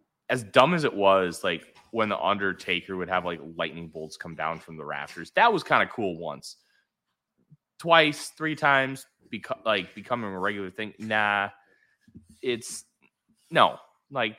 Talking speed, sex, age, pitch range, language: 160 wpm, male, 20-39, 85-115 Hz, English